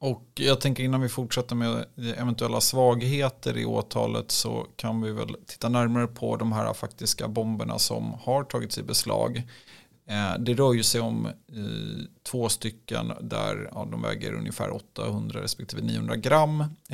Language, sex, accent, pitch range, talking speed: Swedish, male, native, 110-125 Hz, 150 wpm